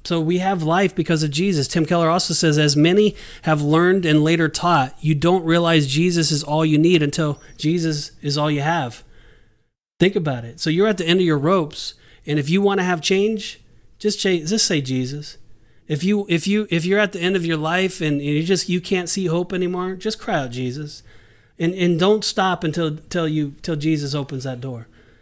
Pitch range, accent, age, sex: 145-175 Hz, American, 30-49, male